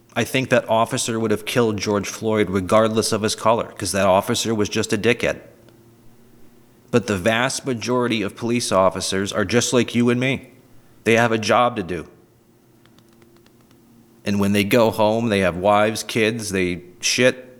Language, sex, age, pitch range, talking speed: English, male, 40-59, 110-130 Hz, 170 wpm